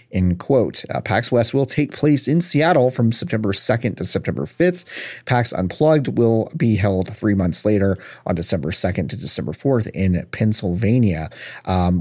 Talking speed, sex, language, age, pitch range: 165 wpm, male, English, 30-49, 100-145 Hz